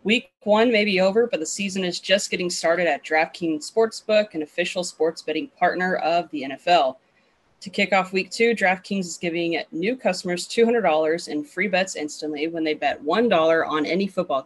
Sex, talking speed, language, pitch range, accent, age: female, 185 wpm, English, 165-210 Hz, American, 20-39